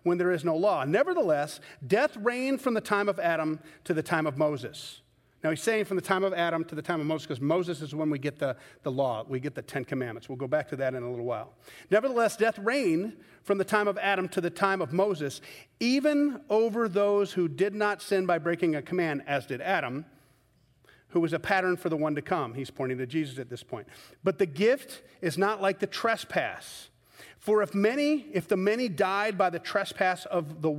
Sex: male